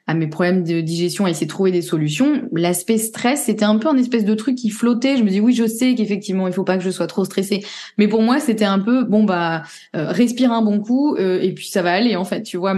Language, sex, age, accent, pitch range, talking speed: French, female, 20-39, French, 175-215 Hz, 280 wpm